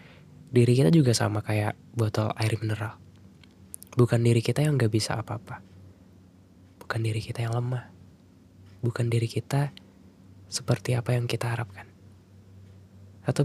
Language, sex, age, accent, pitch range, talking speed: Indonesian, male, 10-29, native, 95-120 Hz, 130 wpm